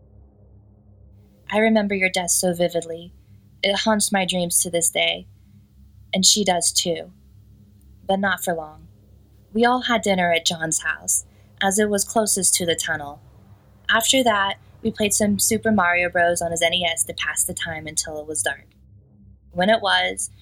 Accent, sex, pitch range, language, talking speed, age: American, female, 160-200 Hz, English, 170 wpm, 20-39